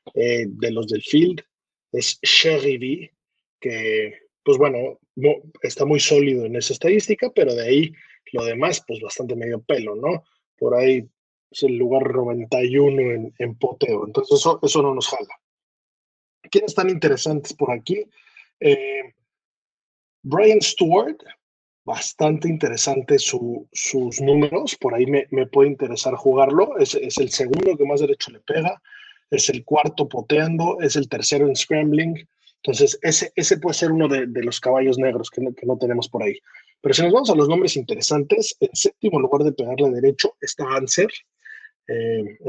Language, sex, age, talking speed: Spanish, male, 30-49, 165 wpm